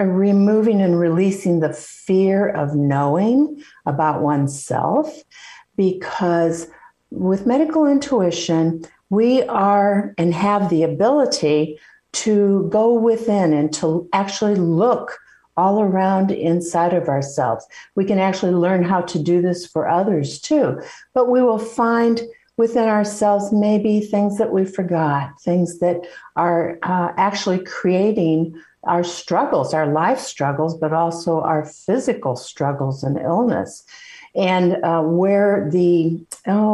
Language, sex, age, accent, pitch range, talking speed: English, female, 60-79, American, 160-205 Hz, 125 wpm